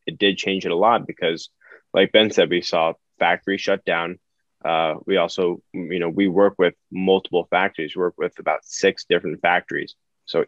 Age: 20-39